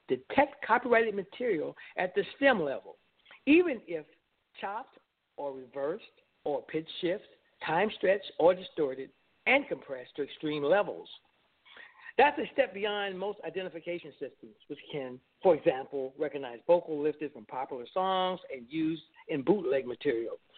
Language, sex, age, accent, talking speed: English, male, 60-79, American, 130 wpm